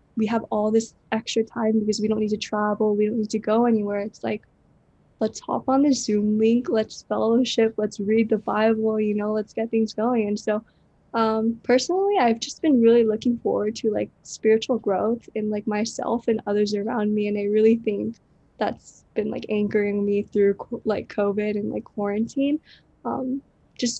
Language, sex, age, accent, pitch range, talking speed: English, female, 10-29, American, 210-235 Hz, 190 wpm